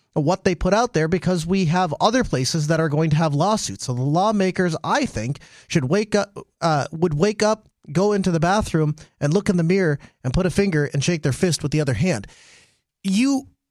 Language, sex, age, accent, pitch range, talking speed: English, male, 30-49, American, 145-195 Hz, 220 wpm